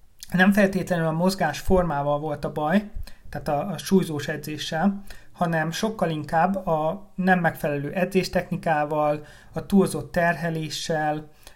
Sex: male